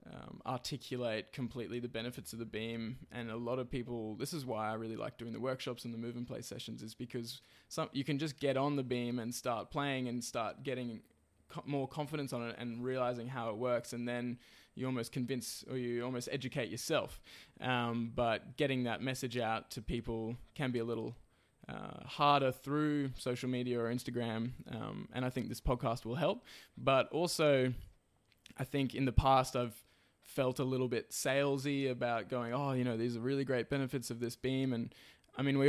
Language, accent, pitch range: English, Australian, 115-135 Hz